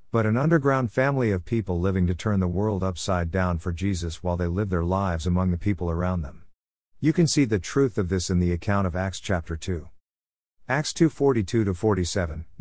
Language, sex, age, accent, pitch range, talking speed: English, male, 50-69, American, 85-115 Hz, 200 wpm